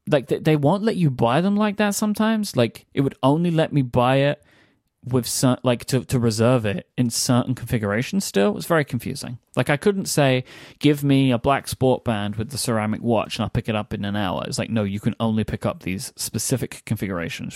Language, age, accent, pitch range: English, 20-39, British, 110-140 Hz